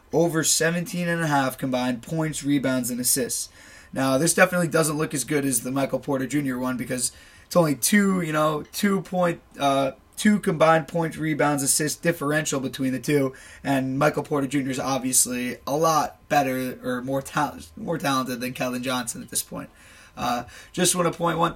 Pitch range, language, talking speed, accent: 130-155 Hz, English, 185 wpm, American